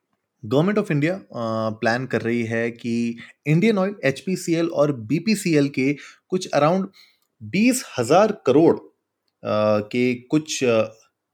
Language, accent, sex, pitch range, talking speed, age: Hindi, native, male, 110-140 Hz, 115 wpm, 20-39